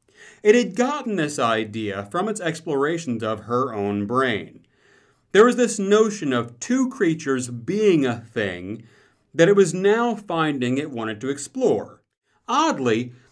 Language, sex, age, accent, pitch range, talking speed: English, male, 40-59, American, 120-195 Hz, 145 wpm